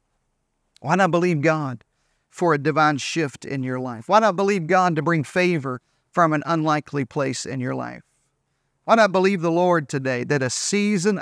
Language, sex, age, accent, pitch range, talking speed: English, male, 40-59, American, 145-175 Hz, 180 wpm